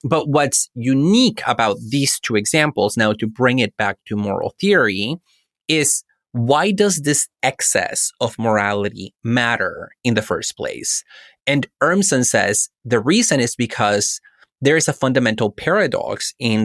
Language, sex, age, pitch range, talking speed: English, male, 30-49, 110-140 Hz, 145 wpm